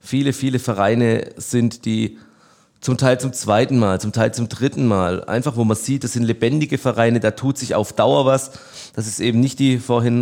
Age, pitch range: 30-49, 110-125 Hz